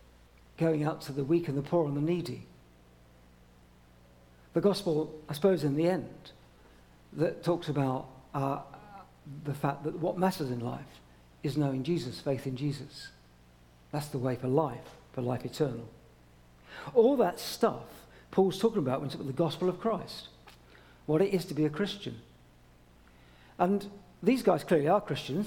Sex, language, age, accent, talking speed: male, English, 50-69, British, 165 wpm